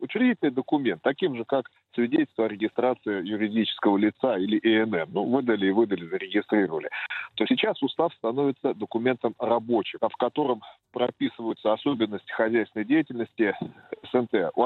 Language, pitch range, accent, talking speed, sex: Russian, 110-140 Hz, native, 125 wpm, male